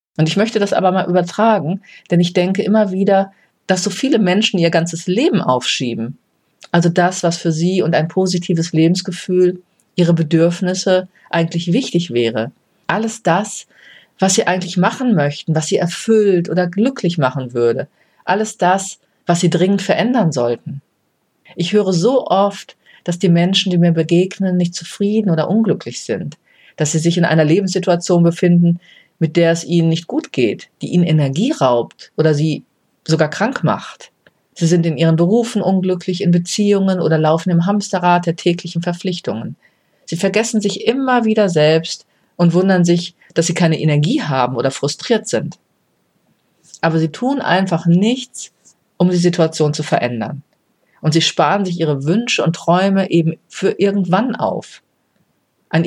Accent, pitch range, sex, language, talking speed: German, 165-195 Hz, female, German, 160 wpm